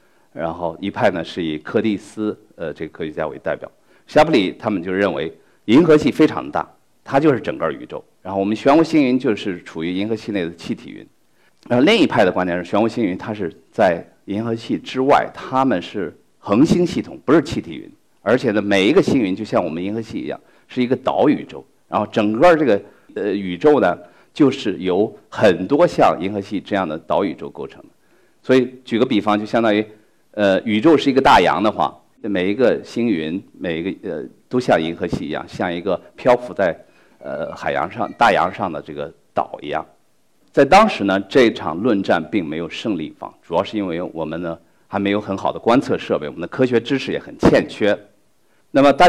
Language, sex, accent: Chinese, male, native